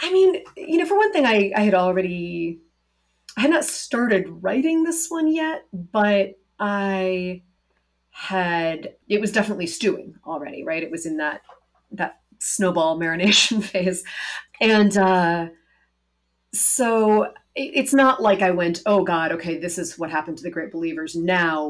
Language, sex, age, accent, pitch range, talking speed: English, female, 30-49, American, 160-215 Hz, 155 wpm